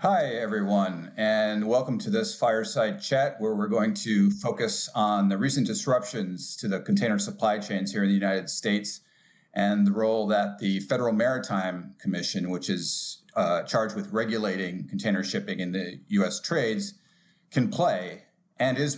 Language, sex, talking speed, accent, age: English, male, 160 wpm, American, 40-59